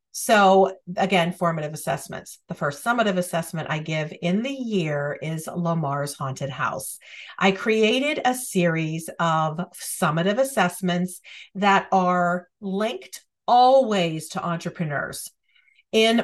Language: English